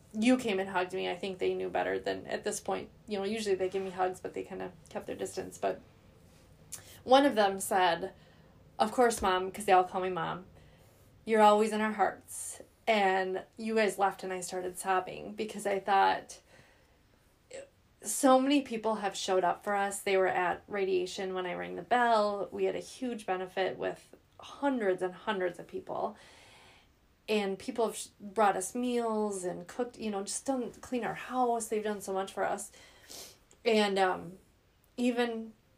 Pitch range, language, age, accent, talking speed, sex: 180-215 Hz, English, 20-39, American, 185 wpm, female